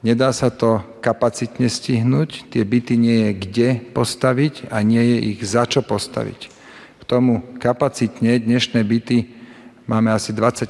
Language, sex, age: Slovak, male, 40-59